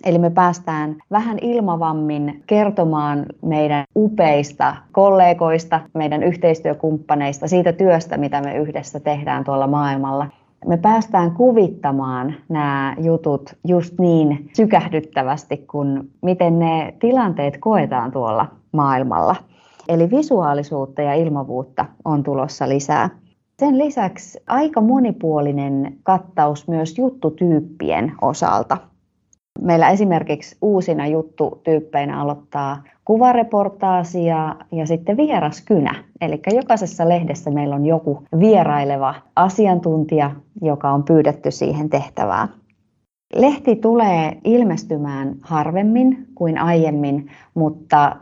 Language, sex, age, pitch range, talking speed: Finnish, female, 30-49, 145-190 Hz, 95 wpm